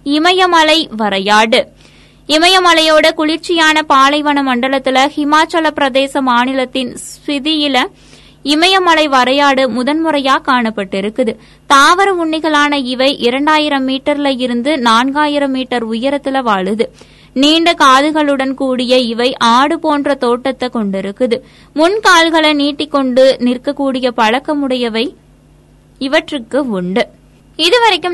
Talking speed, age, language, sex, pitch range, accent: 80 wpm, 20-39, Tamil, female, 255-310 Hz, native